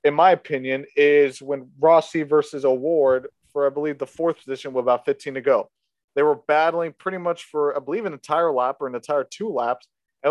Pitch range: 145-185 Hz